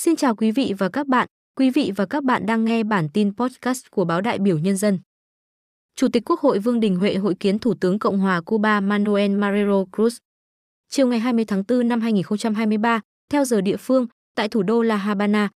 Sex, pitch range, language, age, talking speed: female, 195-245 Hz, Vietnamese, 20-39, 215 wpm